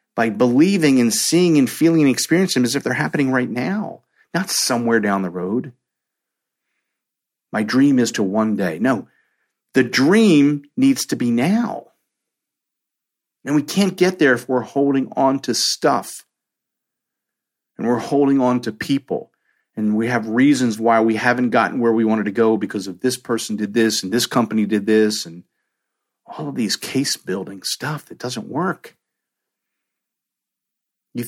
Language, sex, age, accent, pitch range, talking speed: English, male, 50-69, American, 110-145 Hz, 165 wpm